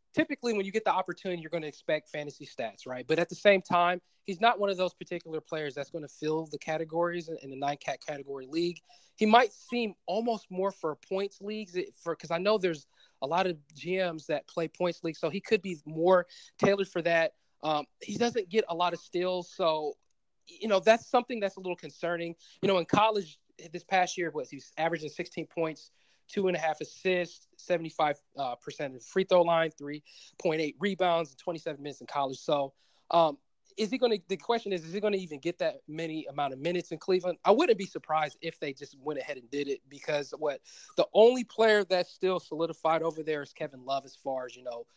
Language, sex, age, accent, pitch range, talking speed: English, male, 20-39, American, 150-190 Hz, 220 wpm